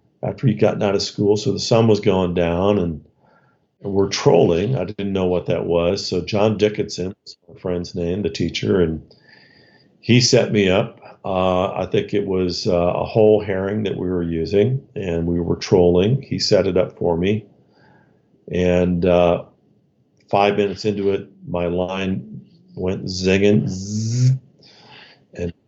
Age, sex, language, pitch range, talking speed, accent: 50-69, male, English, 90-115 Hz, 160 wpm, American